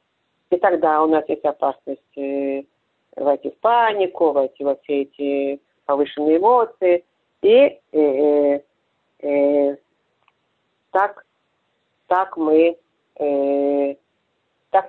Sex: female